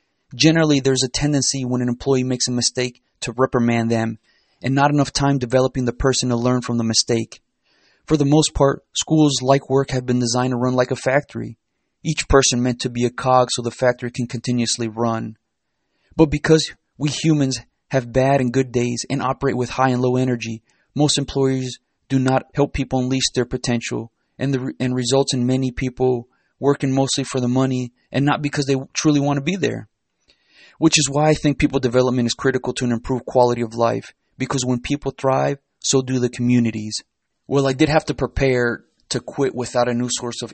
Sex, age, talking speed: male, 30-49, 200 wpm